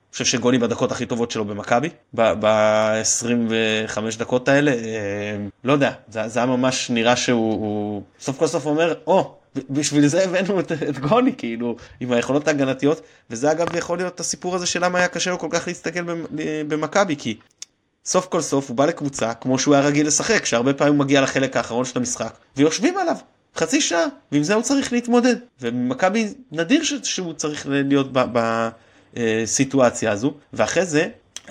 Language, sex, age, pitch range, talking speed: Hebrew, male, 20-39, 110-160 Hz, 175 wpm